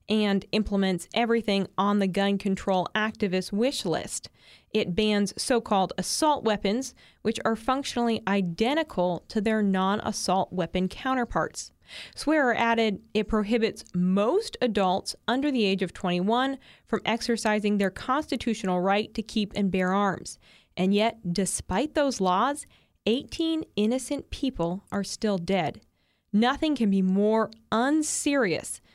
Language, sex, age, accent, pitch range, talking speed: English, female, 20-39, American, 190-230 Hz, 125 wpm